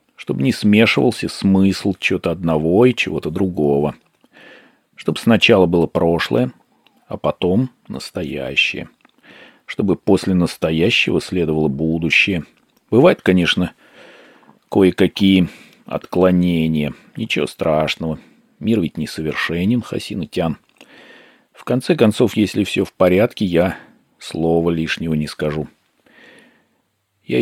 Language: Russian